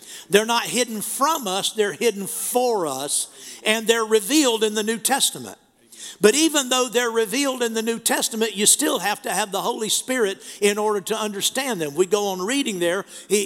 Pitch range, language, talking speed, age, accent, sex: 175-225 Hz, English, 195 wpm, 50-69, American, male